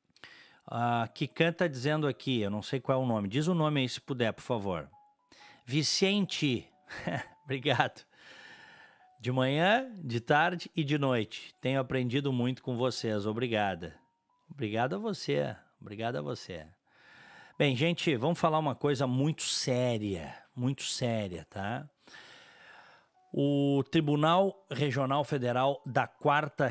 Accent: Brazilian